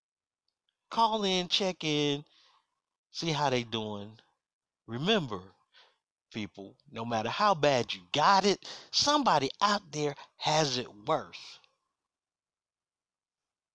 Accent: American